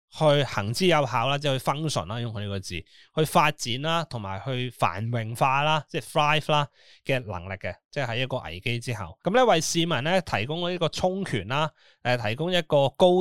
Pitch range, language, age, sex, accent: 115-150 Hz, Chinese, 20-39, male, native